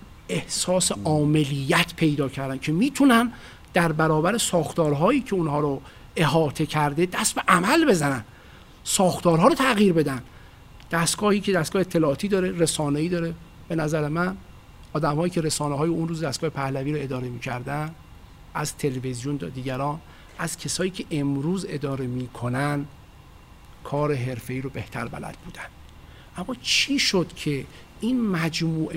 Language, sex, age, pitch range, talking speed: Persian, male, 50-69, 145-185 Hz, 130 wpm